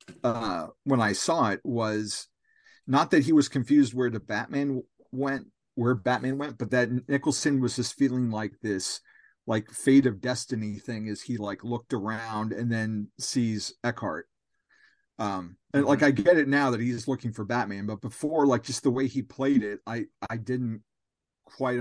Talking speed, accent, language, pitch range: 180 wpm, American, English, 110-135 Hz